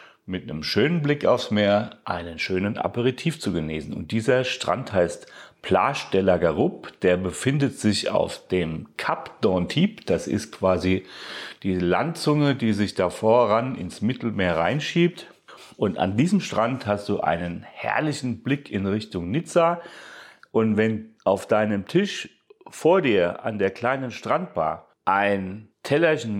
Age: 40-59